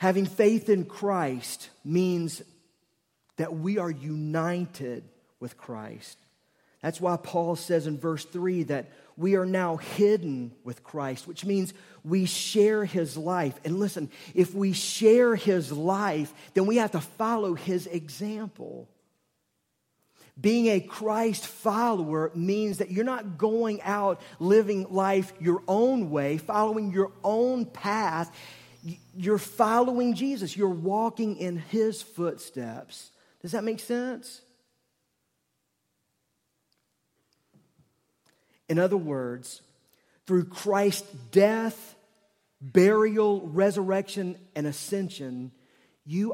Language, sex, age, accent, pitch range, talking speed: English, male, 40-59, American, 165-210 Hz, 115 wpm